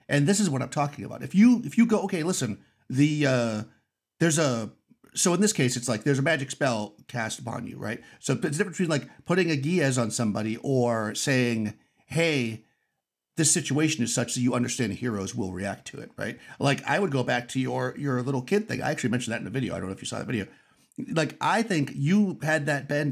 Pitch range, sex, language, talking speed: 120-160 Hz, male, English, 235 wpm